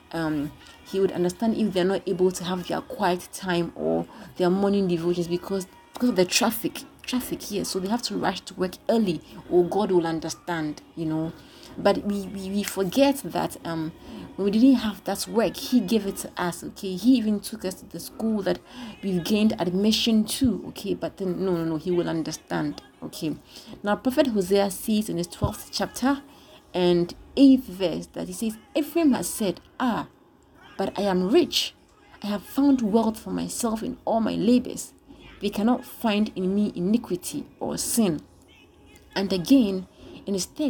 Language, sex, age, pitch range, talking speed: English, female, 30-49, 180-230 Hz, 185 wpm